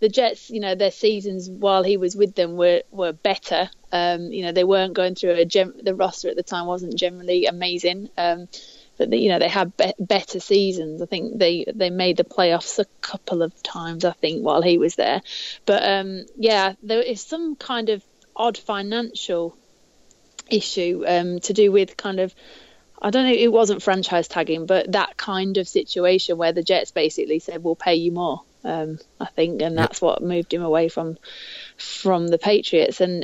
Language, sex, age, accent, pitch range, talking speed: English, female, 30-49, British, 175-200 Hz, 195 wpm